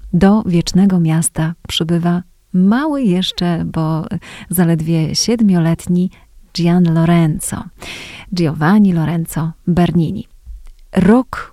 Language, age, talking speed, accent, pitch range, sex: Polish, 30-49, 80 wpm, native, 165-205 Hz, female